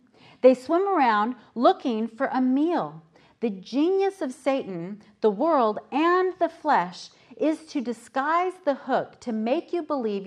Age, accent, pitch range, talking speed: 40-59, American, 175-255 Hz, 145 wpm